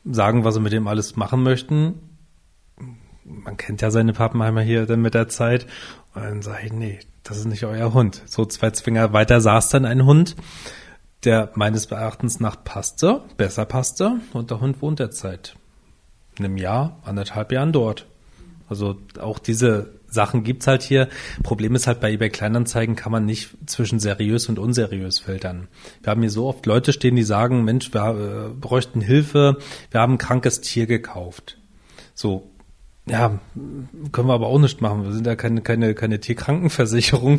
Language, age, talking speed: German, 30-49, 175 wpm